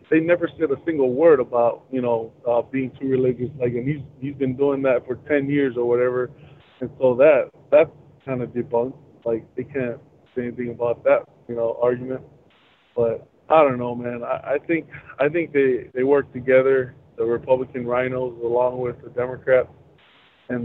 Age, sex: 20-39, male